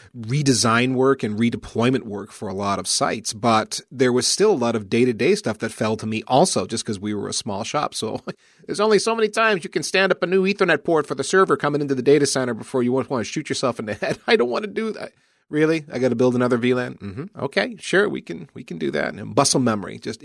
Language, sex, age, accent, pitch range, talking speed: English, male, 30-49, American, 110-145 Hz, 260 wpm